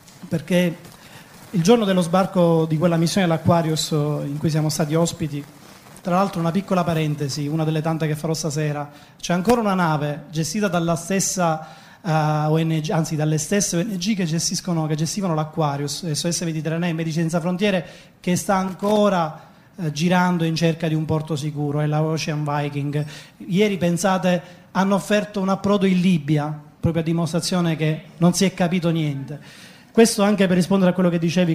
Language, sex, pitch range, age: Italian, male, 155-185 Hz, 30-49